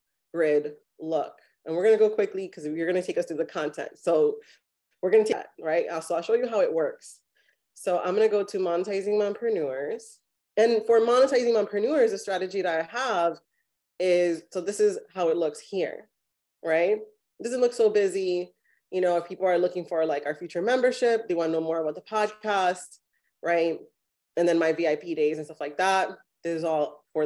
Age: 30-49